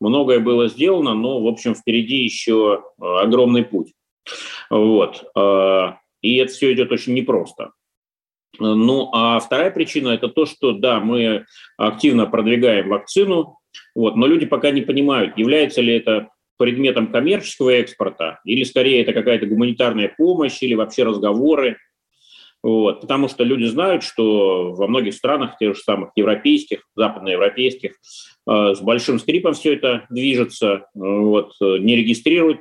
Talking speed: 130 wpm